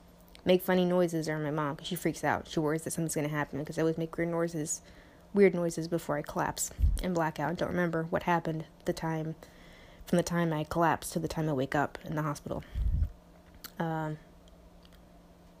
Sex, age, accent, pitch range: female, 20-39, American, 145-185 Hz